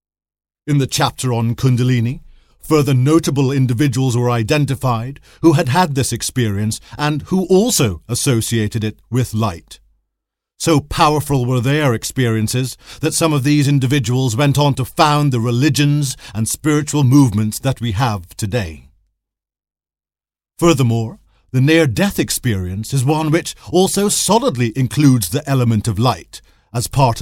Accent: British